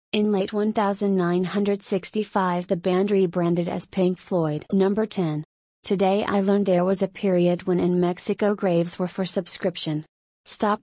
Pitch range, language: 180-200 Hz, English